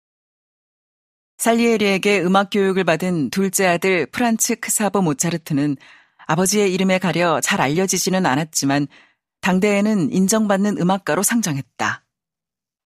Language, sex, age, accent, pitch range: Korean, female, 40-59, native, 160-205 Hz